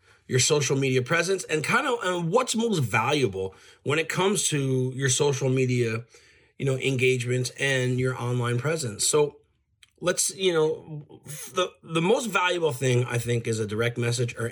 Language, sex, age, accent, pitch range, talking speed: English, male, 30-49, American, 115-140 Hz, 170 wpm